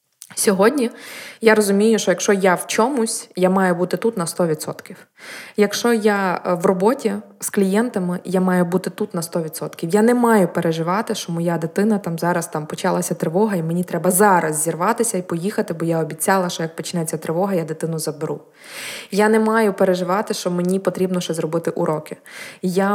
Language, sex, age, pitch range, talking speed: Ukrainian, female, 20-39, 170-210 Hz, 175 wpm